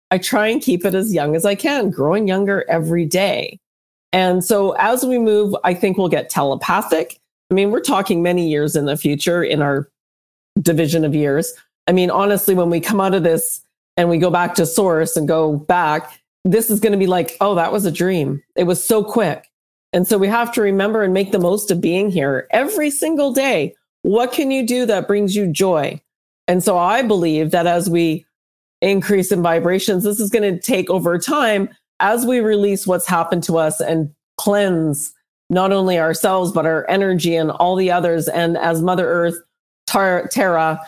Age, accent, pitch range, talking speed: 40-59, American, 165-200 Hz, 200 wpm